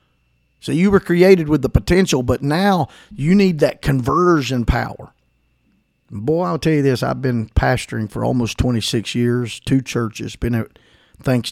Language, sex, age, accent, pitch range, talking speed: English, male, 50-69, American, 110-135 Hz, 160 wpm